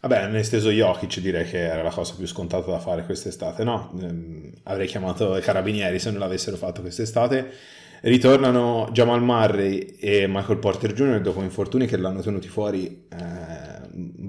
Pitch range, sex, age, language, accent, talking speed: 95-115 Hz, male, 30-49, Italian, native, 175 wpm